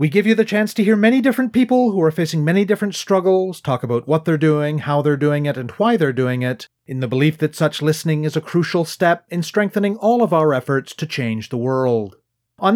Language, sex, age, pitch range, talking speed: English, male, 30-49, 140-195 Hz, 240 wpm